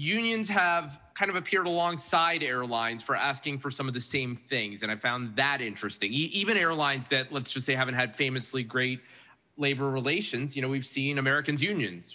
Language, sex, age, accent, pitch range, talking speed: English, male, 30-49, American, 125-160 Hz, 195 wpm